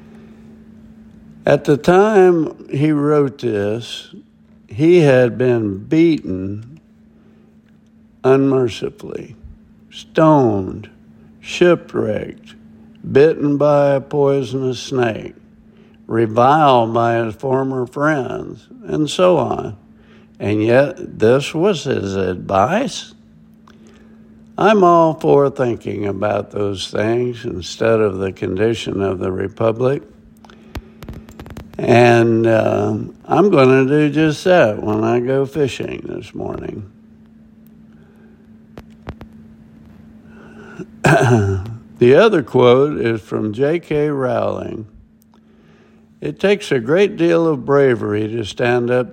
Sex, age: male, 60-79